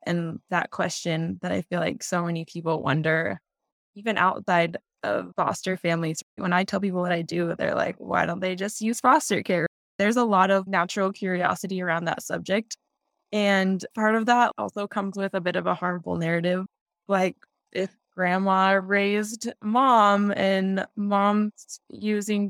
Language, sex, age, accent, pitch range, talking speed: English, female, 10-29, American, 180-215 Hz, 165 wpm